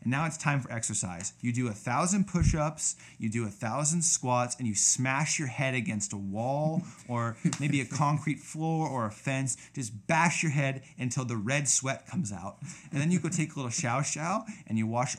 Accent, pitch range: American, 120-160 Hz